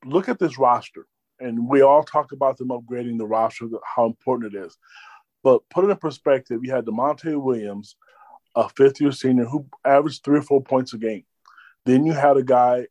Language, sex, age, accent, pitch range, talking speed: English, male, 30-49, American, 125-160 Hz, 195 wpm